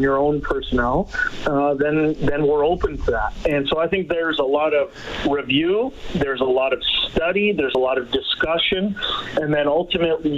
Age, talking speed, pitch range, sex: 40-59, 185 wpm, 140-165 Hz, male